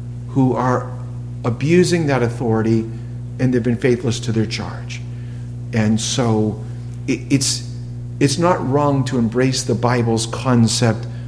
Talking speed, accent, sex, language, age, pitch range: 120 wpm, American, male, English, 50-69, 120-140 Hz